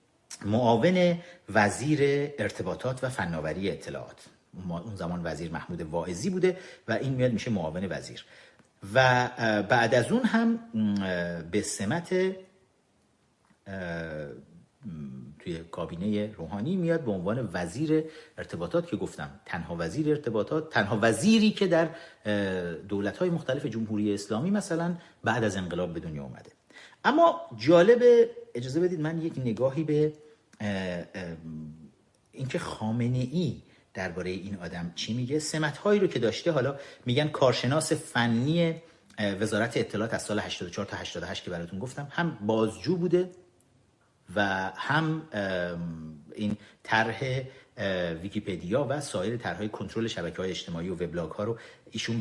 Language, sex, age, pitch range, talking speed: Persian, male, 50-69, 100-160 Hz, 120 wpm